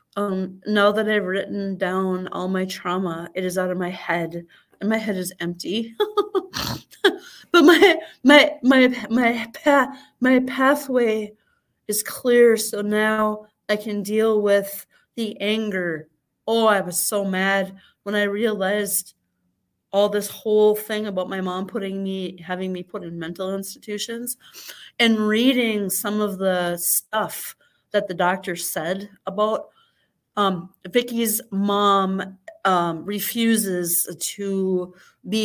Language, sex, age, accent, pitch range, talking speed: English, female, 30-49, American, 185-235 Hz, 135 wpm